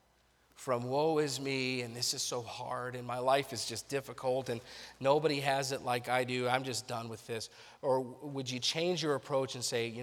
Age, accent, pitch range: 40-59, American, 115-140 Hz